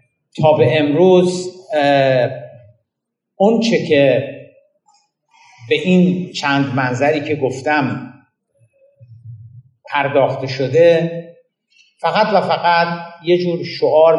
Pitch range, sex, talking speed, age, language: 130-170 Hz, male, 85 wpm, 50-69, Persian